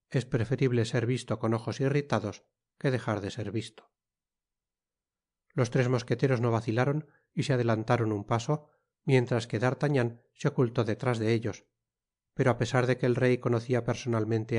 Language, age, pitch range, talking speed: Spanish, 30-49, 115-130 Hz, 160 wpm